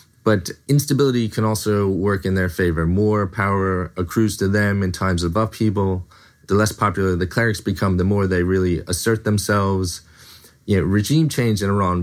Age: 30-49